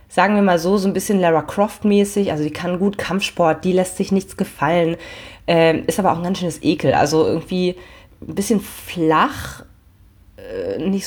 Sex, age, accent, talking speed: female, 30-49, German, 185 wpm